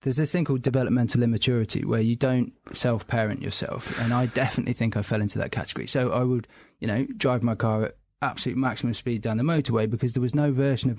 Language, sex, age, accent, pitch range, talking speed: English, male, 20-39, British, 115-135 Hz, 225 wpm